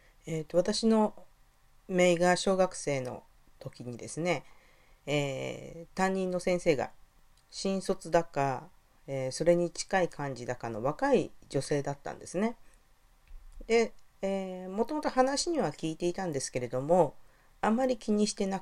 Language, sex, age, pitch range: Japanese, female, 40-59, 150-225 Hz